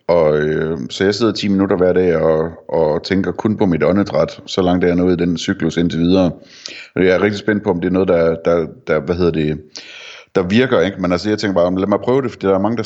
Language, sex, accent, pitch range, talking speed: Danish, male, native, 85-100 Hz, 275 wpm